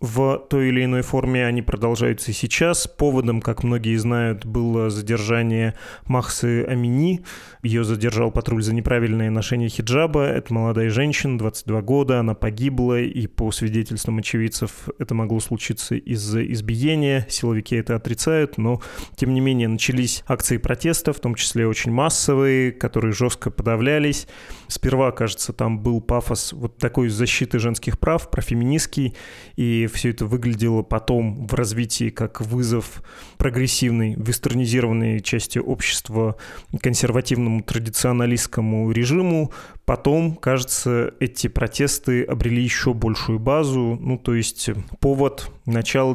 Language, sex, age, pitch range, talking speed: Russian, male, 20-39, 115-130 Hz, 125 wpm